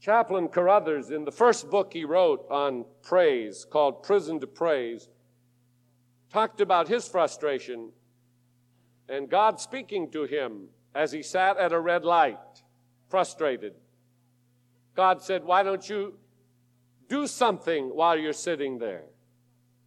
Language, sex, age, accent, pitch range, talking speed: English, male, 50-69, American, 125-190 Hz, 125 wpm